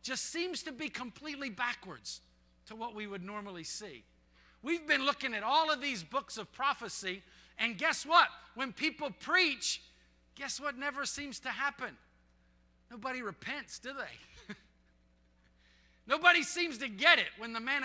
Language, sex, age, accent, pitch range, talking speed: English, male, 50-69, American, 180-280 Hz, 155 wpm